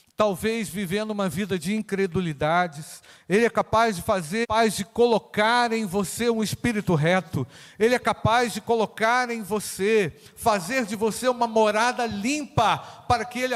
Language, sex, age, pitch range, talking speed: Portuguese, male, 50-69, 185-245 Hz, 150 wpm